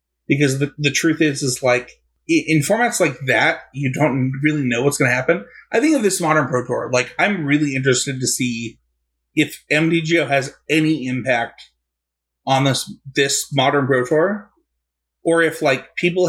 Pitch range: 125-160 Hz